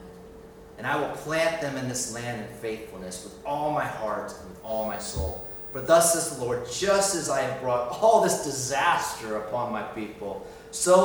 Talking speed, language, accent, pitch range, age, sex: 195 wpm, English, American, 120-170 Hz, 30-49, male